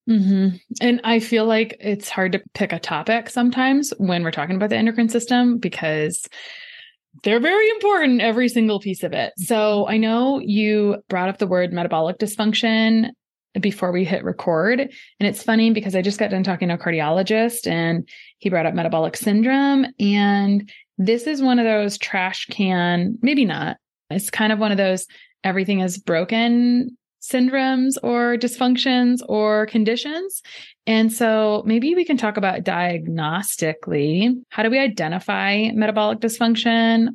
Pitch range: 185-235 Hz